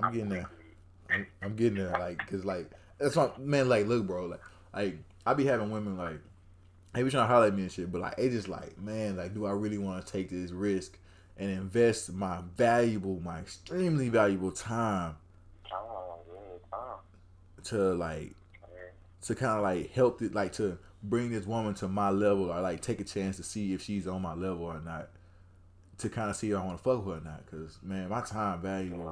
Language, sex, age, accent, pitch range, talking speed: English, male, 20-39, American, 90-115 Hz, 210 wpm